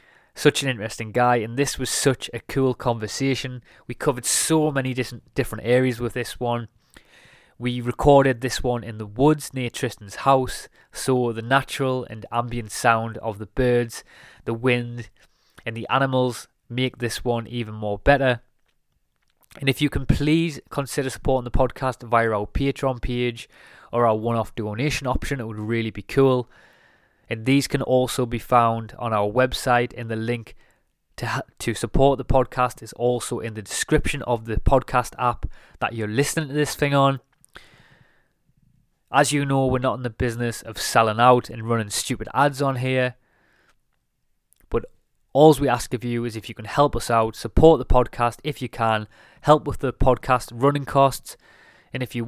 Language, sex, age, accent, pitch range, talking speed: English, male, 20-39, British, 115-135 Hz, 175 wpm